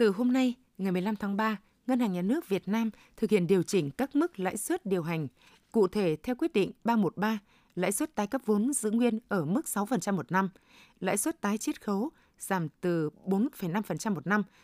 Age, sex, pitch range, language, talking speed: 20-39, female, 185-235 Hz, Vietnamese, 210 wpm